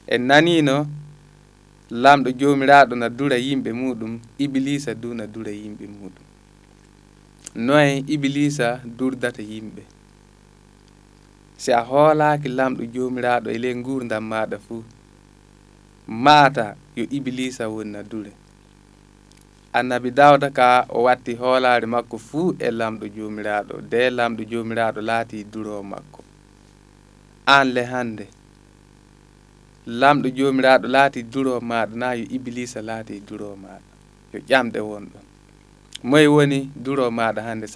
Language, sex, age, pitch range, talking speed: English, male, 20-39, 110-135 Hz, 120 wpm